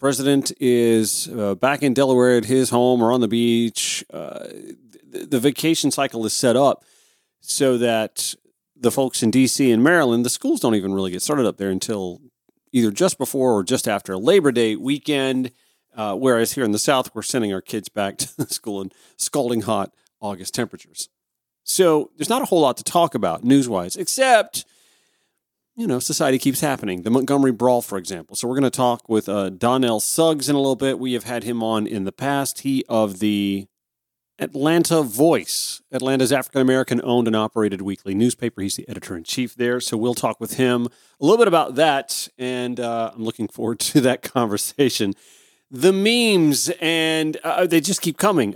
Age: 40-59